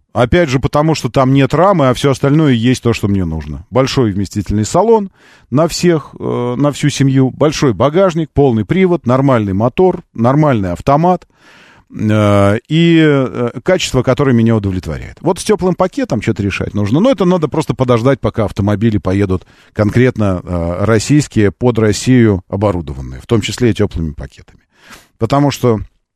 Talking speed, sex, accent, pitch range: 145 wpm, male, native, 105-145 Hz